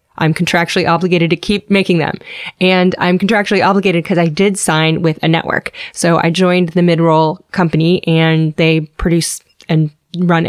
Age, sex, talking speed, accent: 20-39, female, 170 wpm, American